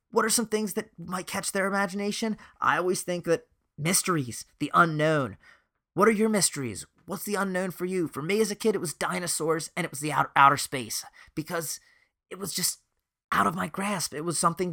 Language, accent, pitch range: English, American, 145-205 Hz